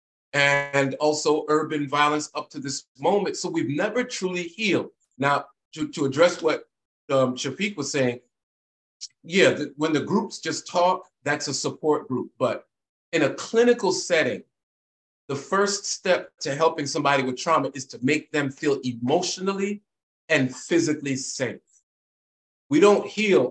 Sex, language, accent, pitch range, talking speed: male, English, American, 135-180 Hz, 145 wpm